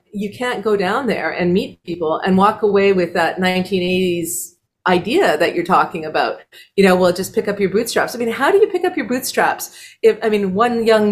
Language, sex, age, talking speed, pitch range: English, female, 40-59, 220 wpm, 200-285 Hz